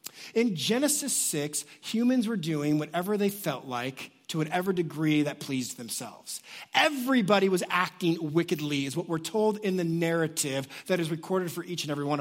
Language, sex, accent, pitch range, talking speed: English, male, American, 150-200 Hz, 170 wpm